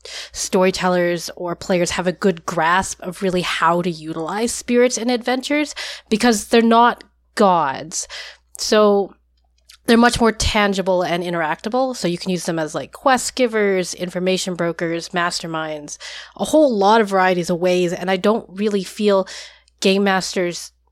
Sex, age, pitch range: female, 20-39, 170-205 Hz